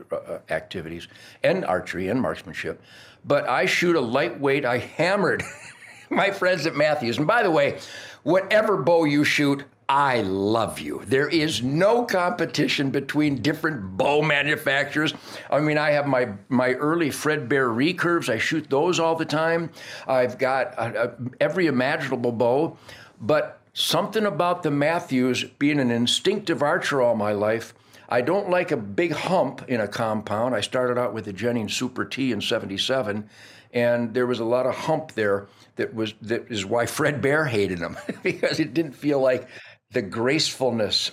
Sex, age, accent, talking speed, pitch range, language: male, 60-79, American, 165 wpm, 115-150 Hz, English